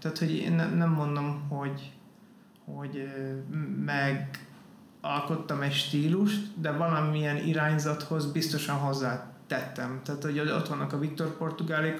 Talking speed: 110 wpm